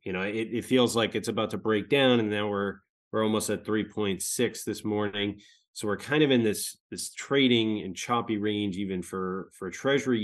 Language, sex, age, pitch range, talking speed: English, male, 20-39, 105-120 Hz, 205 wpm